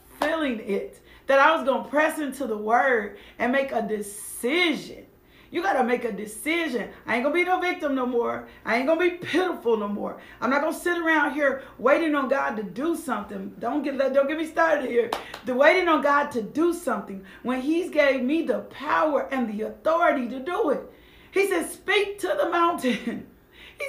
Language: English